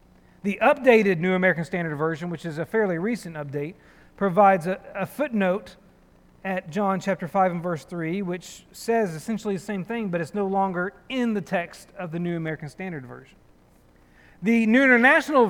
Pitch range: 175-230 Hz